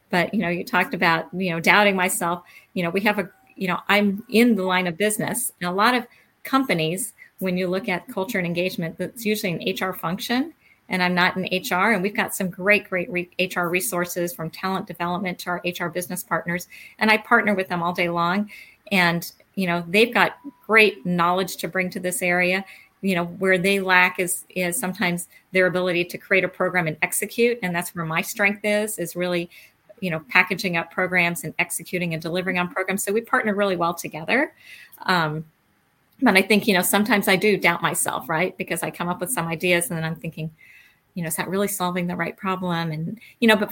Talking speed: 215 wpm